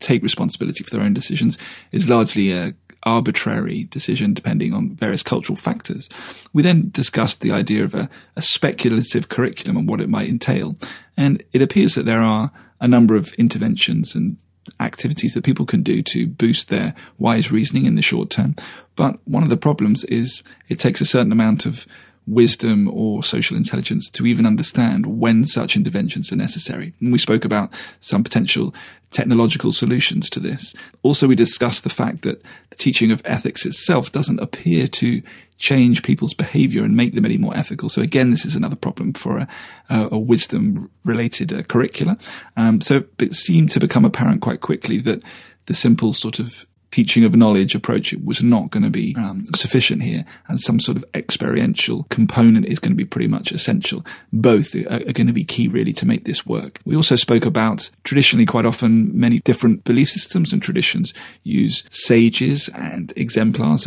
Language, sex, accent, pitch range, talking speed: English, male, British, 115-190 Hz, 180 wpm